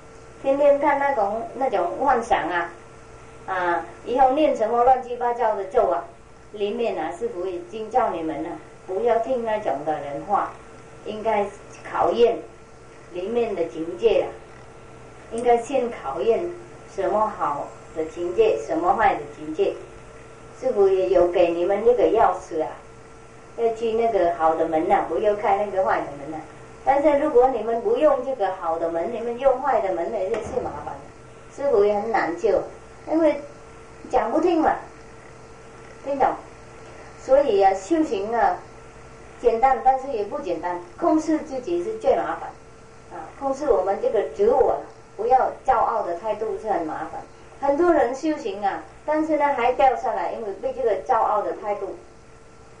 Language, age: English, 30-49